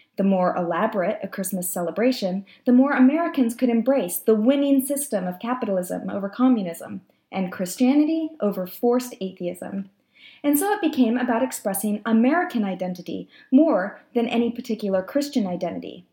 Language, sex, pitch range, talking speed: English, female, 200-275 Hz, 140 wpm